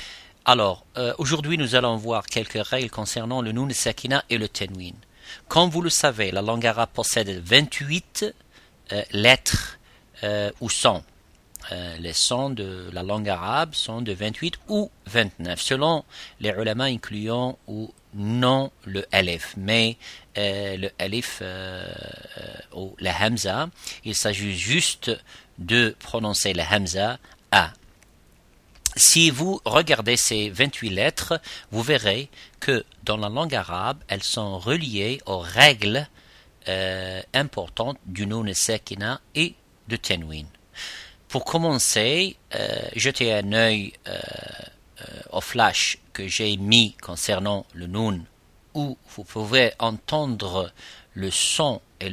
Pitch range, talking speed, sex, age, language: 95-125 Hz, 135 wpm, male, 50-69, French